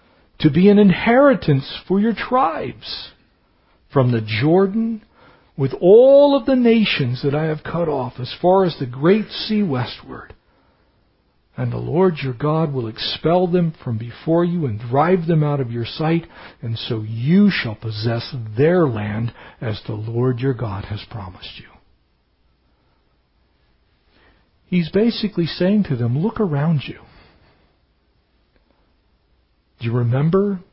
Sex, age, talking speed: male, 60-79, 140 wpm